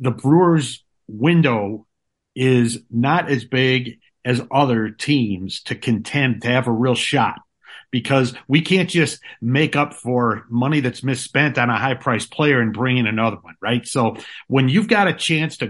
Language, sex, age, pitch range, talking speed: English, male, 50-69, 120-160 Hz, 170 wpm